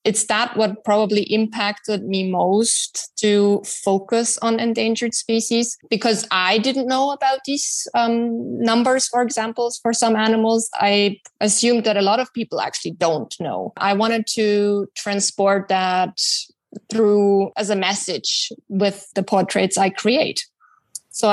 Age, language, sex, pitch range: 20-39, English, female, 195-225 Hz